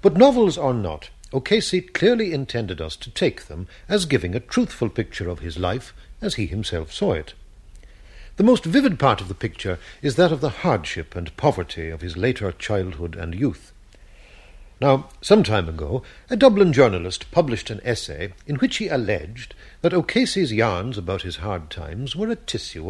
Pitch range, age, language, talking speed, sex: 85-135 Hz, 60-79, English, 180 wpm, male